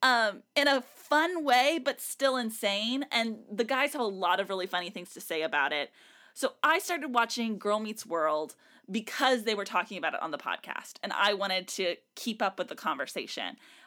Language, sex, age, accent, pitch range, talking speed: English, female, 20-39, American, 210-280 Hz, 205 wpm